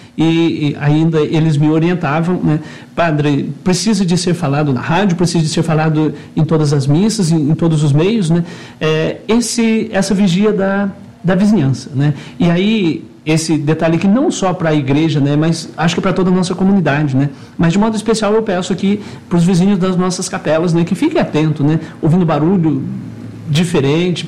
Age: 50-69